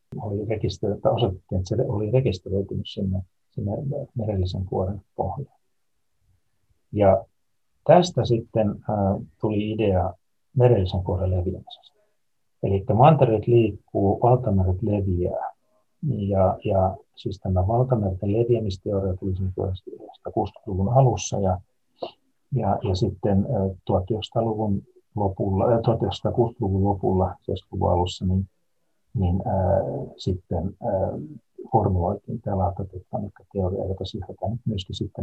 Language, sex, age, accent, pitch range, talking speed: Finnish, male, 60-79, native, 95-120 Hz, 100 wpm